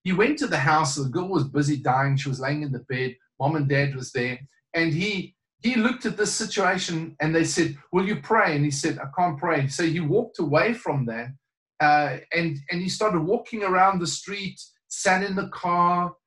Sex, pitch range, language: male, 145-190 Hz, English